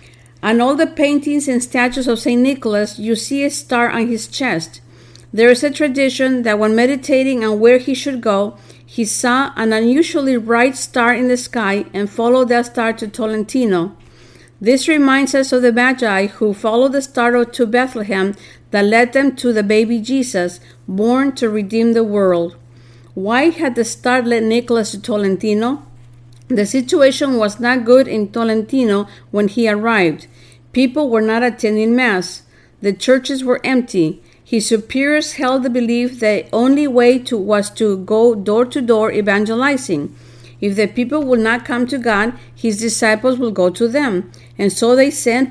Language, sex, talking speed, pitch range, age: English, female, 165 wpm, 205-255 Hz, 50-69